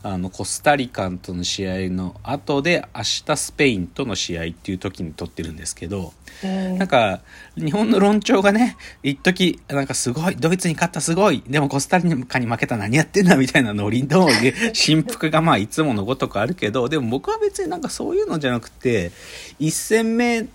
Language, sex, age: Japanese, male, 40-59